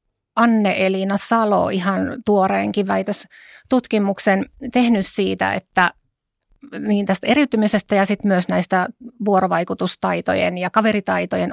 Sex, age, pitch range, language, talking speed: female, 30-49, 190-220 Hz, Finnish, 95 wpm